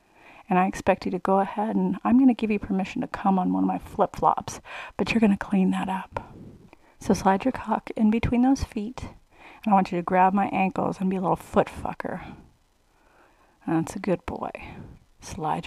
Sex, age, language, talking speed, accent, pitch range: female, 30-49, English, 205 wpm, American, 185-220 Hz